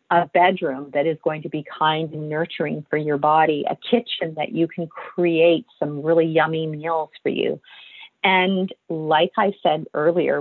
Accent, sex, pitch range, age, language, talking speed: American, female, 155-200 Hz, 40-59, English, 175 wpm